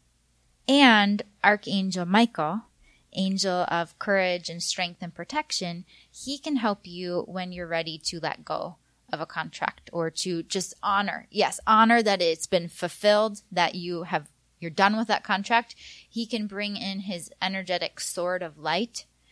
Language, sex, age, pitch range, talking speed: English, female, 20-39, 175-215 Hz, 160 wpm